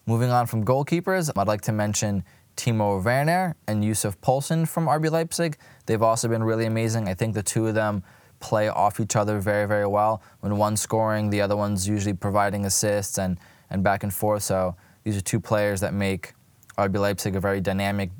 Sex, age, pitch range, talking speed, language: male, 20-39, 100-115 Hz, 200 wpm, English